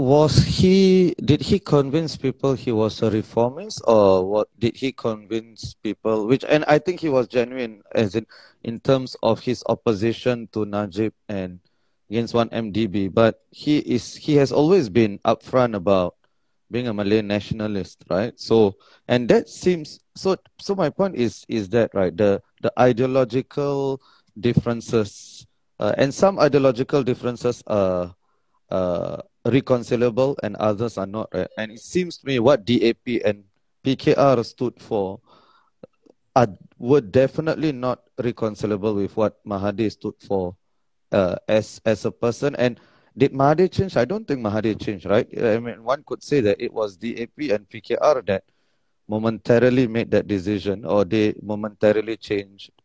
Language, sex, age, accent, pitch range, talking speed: English, male, 30-49, Malaysian, 105-130 Hz, 155 wpm